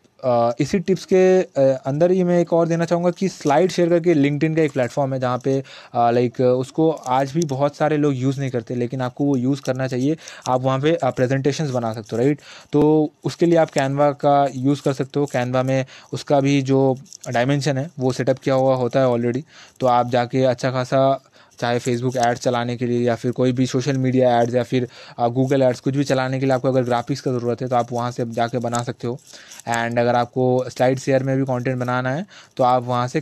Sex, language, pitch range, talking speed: male, Hindi, 125-145 Hz, 225 wpm